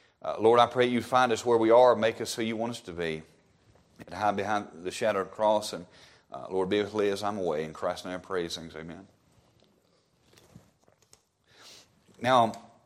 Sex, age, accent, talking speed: male, 40-59, American, 185 wpm